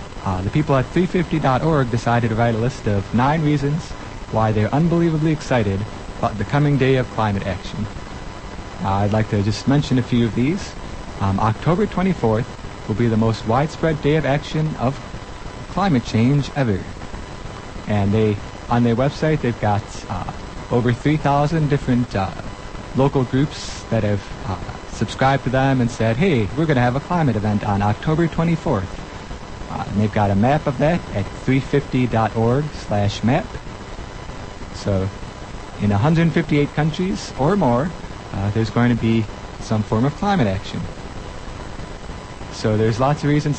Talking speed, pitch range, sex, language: 155 wpm, 105-140 Hz, male, English